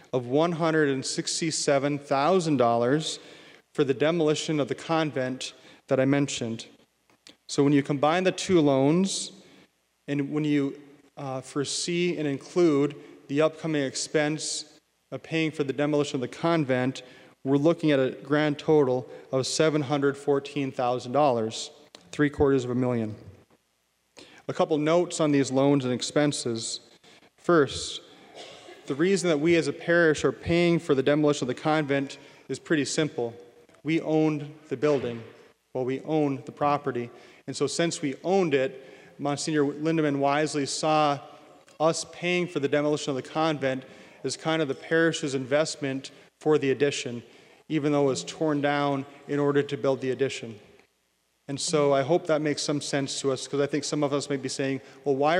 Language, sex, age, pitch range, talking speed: English, male, 30-49, 135-155 Hz, 155 wpm